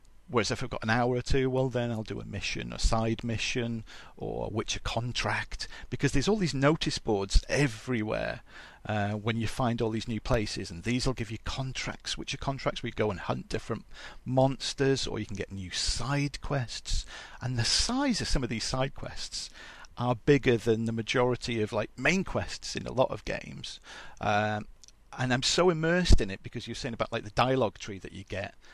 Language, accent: English, British